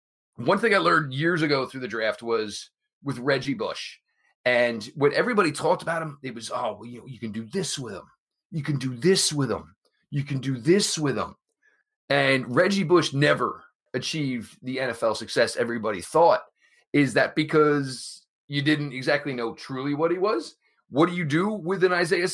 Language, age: English, 30-49